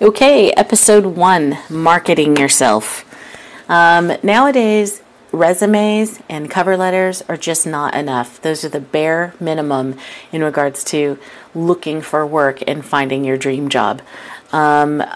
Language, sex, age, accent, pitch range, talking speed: English, female, 40-59, American, 150-190 Hz, 125 wpm